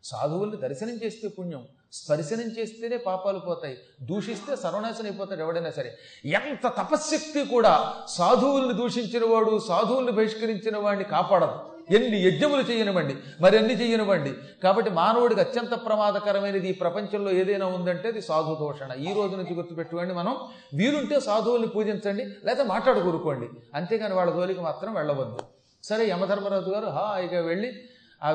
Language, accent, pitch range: Telugu, native, 160-215 Hz